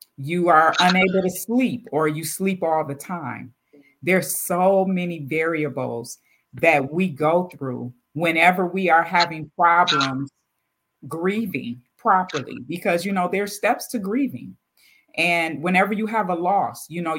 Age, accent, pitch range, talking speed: 40-59, American, 145-180 Hz, 145 wpm